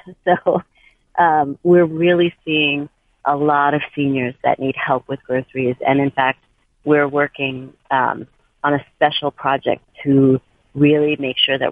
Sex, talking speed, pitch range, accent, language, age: female, 150 wpm, 130-145 Hz, American, English, 40-59